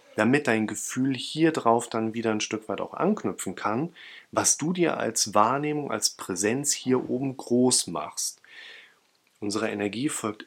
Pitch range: 105-130 Hz